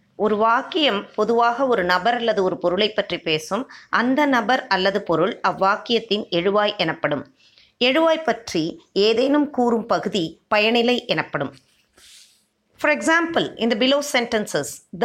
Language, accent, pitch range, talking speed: Tamil, native, 190-265 Hz, 120 wpm